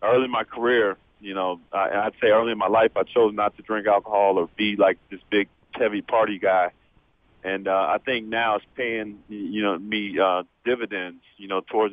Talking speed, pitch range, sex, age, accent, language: 205 wpm, 95-110 Hz, male, 40-59, American, English